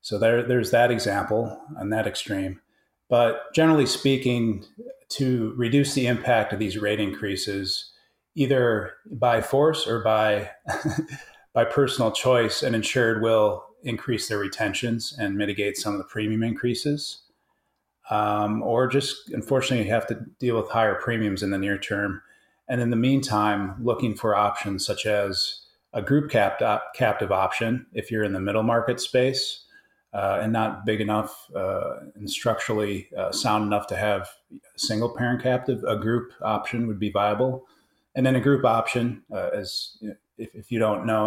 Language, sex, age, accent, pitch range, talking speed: English, male, 30-49, American, 105-125 Hz, 165 wpm